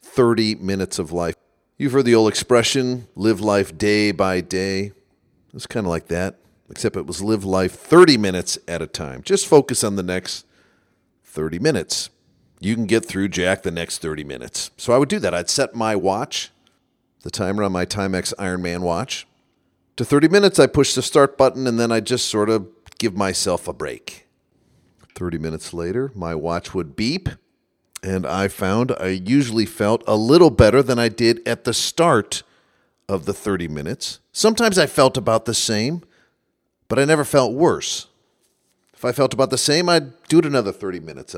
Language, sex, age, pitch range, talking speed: English, male, 40-59, 90-125 Hz, 185 wpm